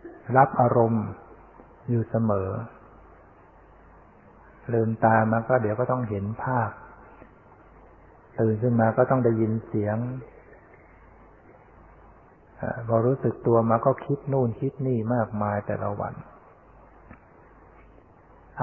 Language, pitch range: Thai, 105-125 Hz